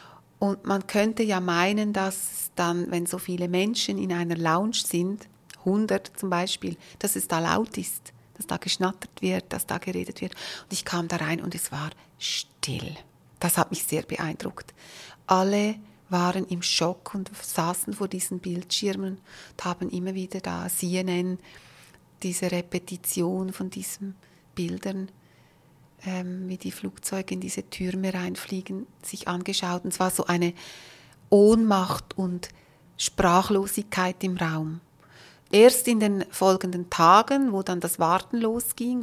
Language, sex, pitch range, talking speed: German, female, 175-195 Hz, 145 wpm